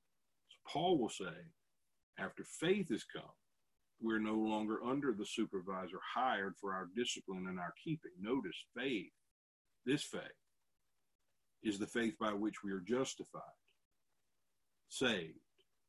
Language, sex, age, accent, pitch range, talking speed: English, male, 50-69, American, 100-130 Hz, 130 wpm